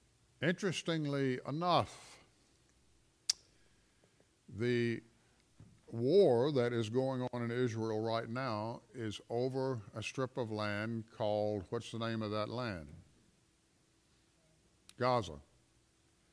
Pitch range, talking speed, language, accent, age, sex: 105-130 Hz, 95 wpm, English, American, 60-79, male